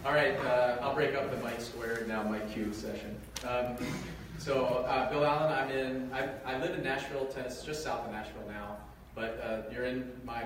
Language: English